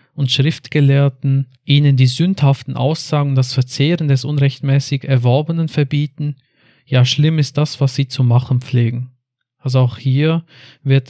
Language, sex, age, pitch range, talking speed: German, male, 40-59, 130-145 Hz, 135 wpm